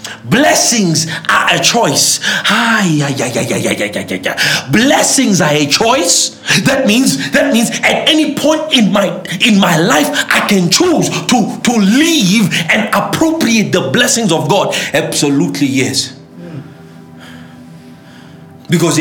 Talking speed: 140 wpm